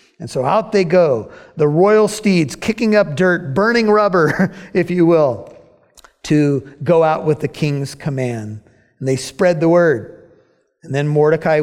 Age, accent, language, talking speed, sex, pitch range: 50-69, American, English, 160 wpm, male, 165-245 Hz